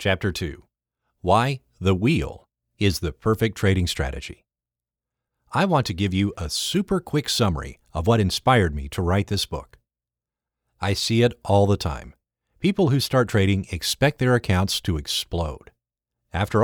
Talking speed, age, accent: 155 wpm, 50-69, American